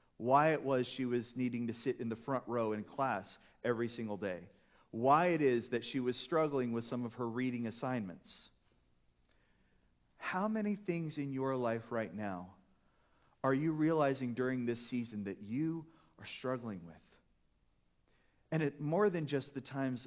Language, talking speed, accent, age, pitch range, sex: English, 165 wpm, American, 40-59, 110-145 Hz, male